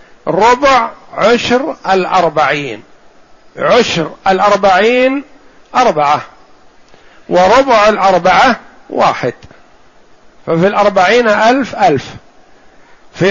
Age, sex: 50-69, male